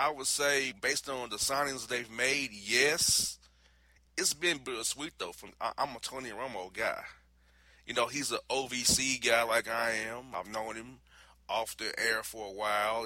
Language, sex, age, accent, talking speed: English, male, 30-49, American, 180 wpm